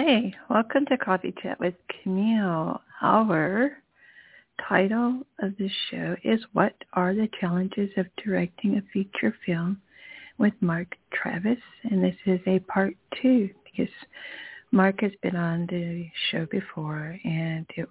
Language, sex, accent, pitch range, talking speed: English, female, American, 170-225 Hz, 135 wpm